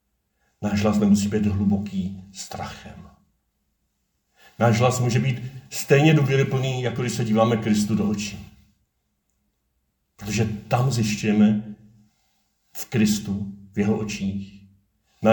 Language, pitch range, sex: Czech, 100-125 Hz, male